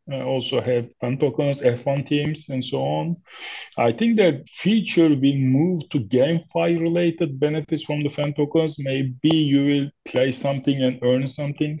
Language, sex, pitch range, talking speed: English, male, 125-150 Hz, 165 wpm